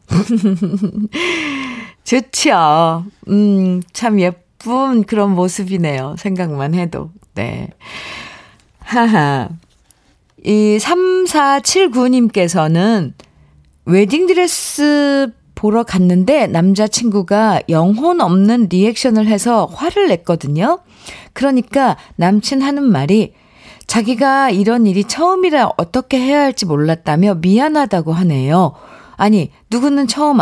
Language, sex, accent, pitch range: Korean, female, native, 180-270 Hz